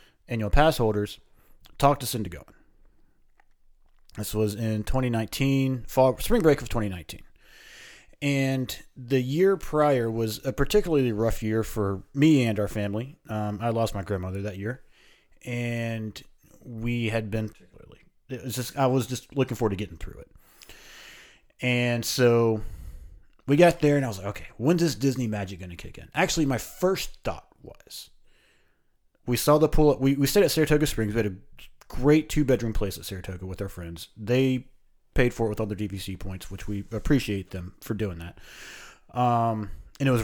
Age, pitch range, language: 30-49, 100-135 Hz, English